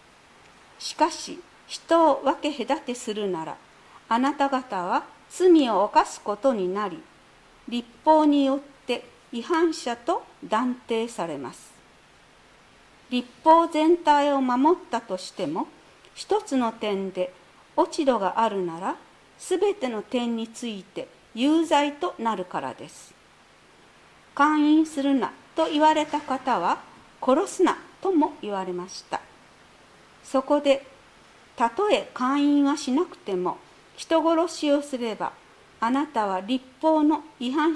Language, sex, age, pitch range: Japanese, female, 50-69, 225-305 Hz